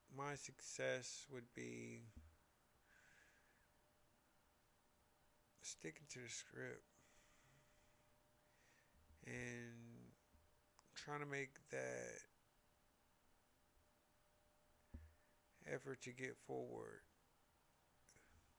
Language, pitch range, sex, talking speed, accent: English, 80-125 Hz, male, 55 wpm, American